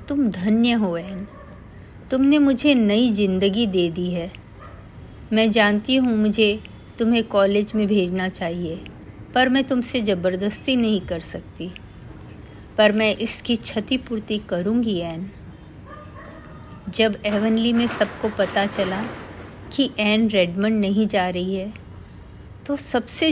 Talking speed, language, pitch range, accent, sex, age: 125 wpm, Hindi, 180-225 Hz, native, female, 50-69